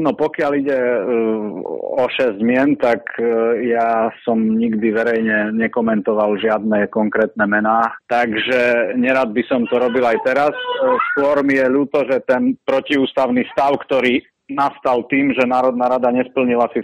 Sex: male